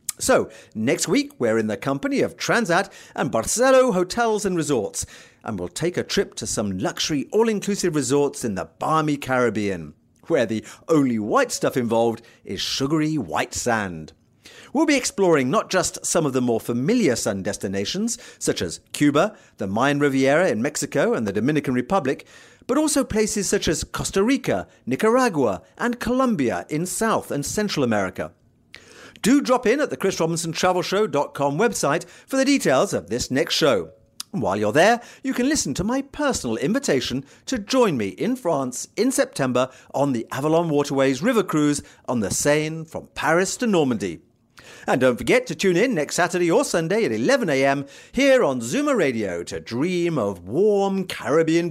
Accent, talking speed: British, 165 wpm